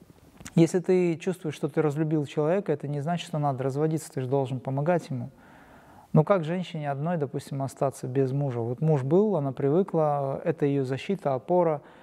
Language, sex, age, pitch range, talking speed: Russian, male, 30-49, 135-165 Hz, 175 wpm